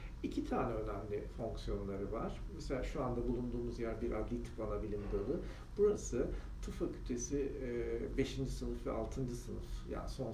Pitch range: 95-130 Hz